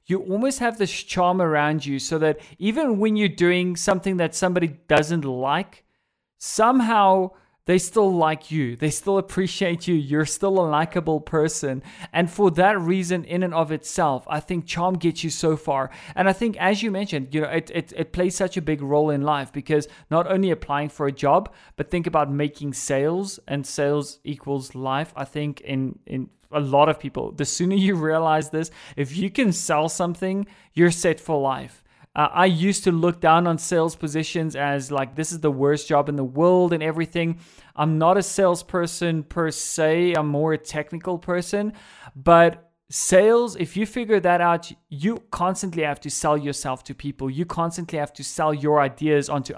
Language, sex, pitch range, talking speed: English, male, 150-180 Hz, 190 wpm